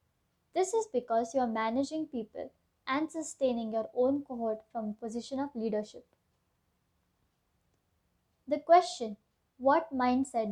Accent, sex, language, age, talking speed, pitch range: Indian, female, English, 20-39, 120 wpm, 225-275 Hz